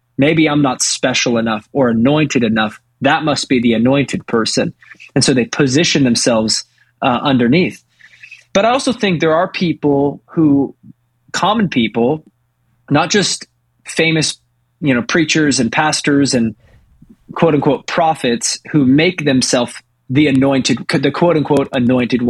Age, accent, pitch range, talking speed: 20-39, American, 125-160 Hz, 135 wpm